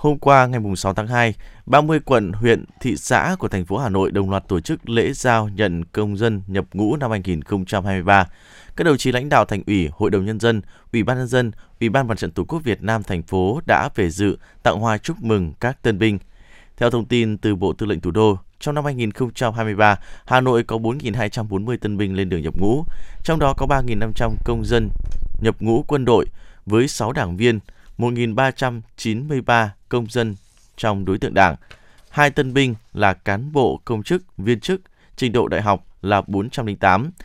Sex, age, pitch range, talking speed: male, 20-39, 100-120 Hz, 200 wpm